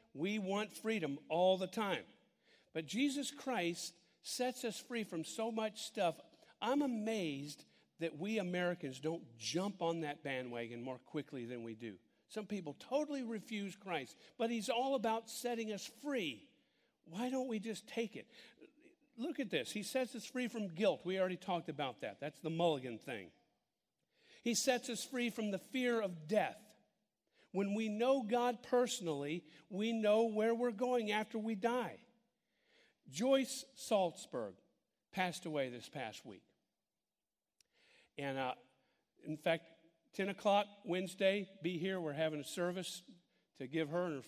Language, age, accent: English, 50-69, American